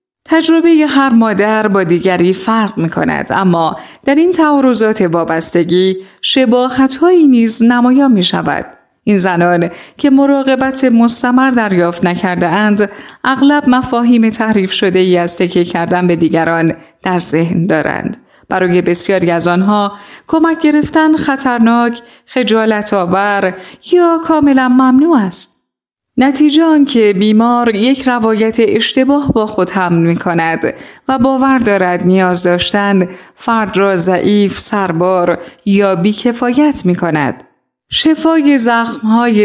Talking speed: 120 wpm